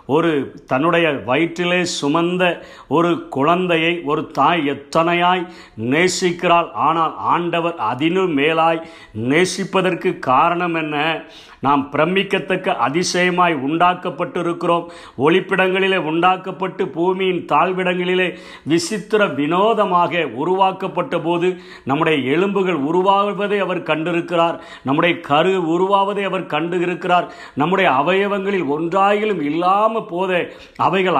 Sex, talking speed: male, 90 wpm